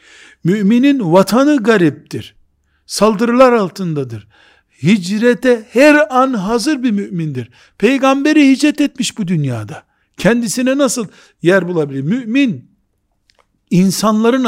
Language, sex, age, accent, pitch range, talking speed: Turkish, male, 60-79, native, 155-240 Hz, 90 wpm